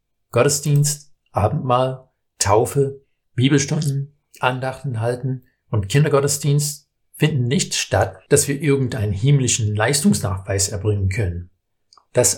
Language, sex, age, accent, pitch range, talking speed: German, male, 60-79, German, 105-140 Hz, 90 wpm